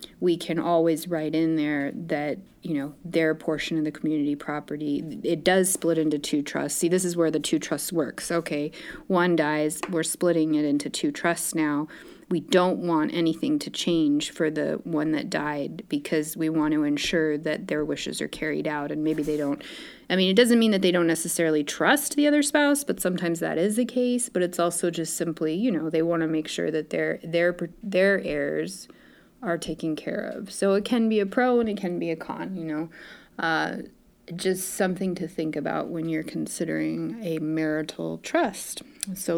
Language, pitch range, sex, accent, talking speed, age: English, 155-205 Hz, female, American, 205 wpm, 30-49